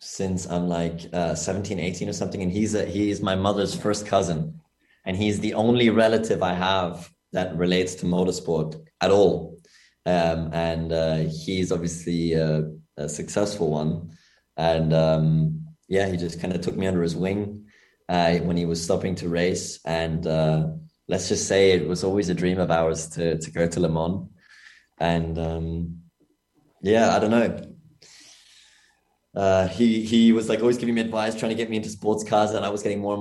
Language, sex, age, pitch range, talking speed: English, male, 20-39, 85-105 Hz, 190 wpm